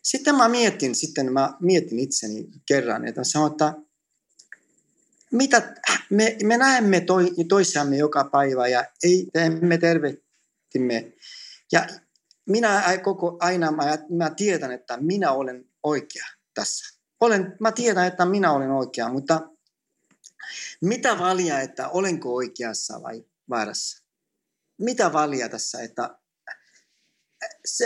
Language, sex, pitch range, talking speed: Finnish, male, 135-200 Hz, 115 wpm